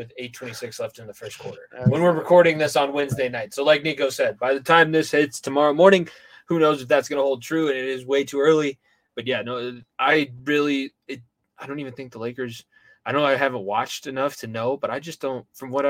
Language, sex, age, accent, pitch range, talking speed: English, male, 20-39, American, 130-155 Hz, 240 wpm